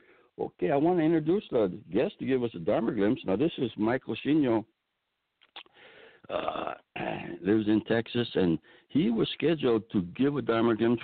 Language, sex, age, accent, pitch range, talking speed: English, male, 60-79, American, 80-110 Hz, 170 wpm